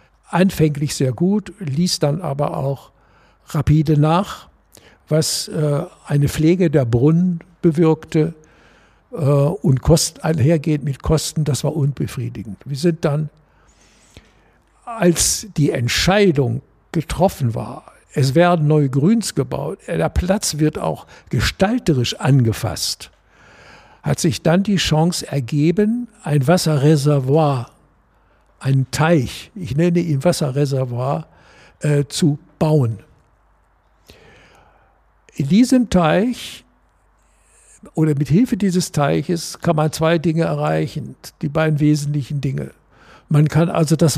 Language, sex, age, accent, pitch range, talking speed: German, male, 60-79, German, 145-175 Hz, 110 wpm